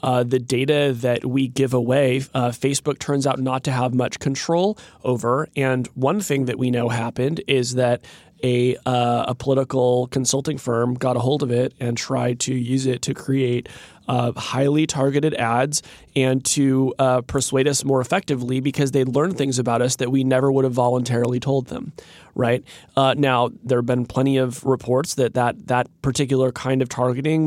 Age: 20-39